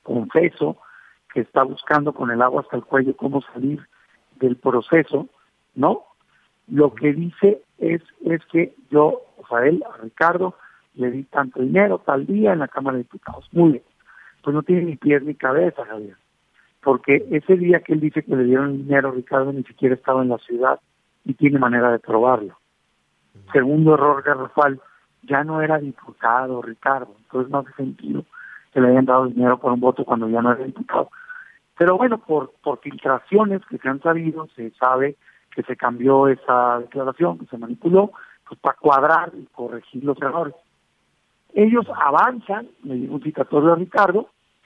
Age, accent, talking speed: 50-69, Mexican, 175 wpm